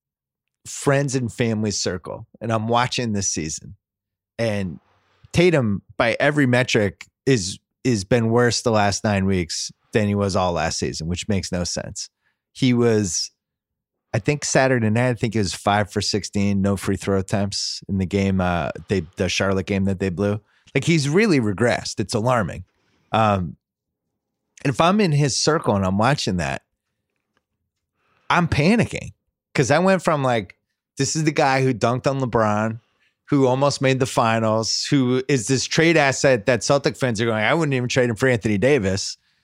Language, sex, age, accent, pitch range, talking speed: English, male, 30-49, American, 100-130 Hz, 175 wpm